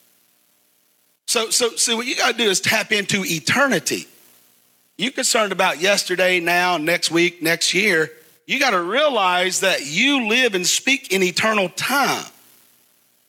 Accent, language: American, English